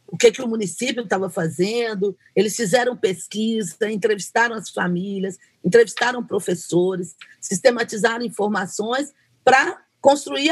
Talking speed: 110 wpm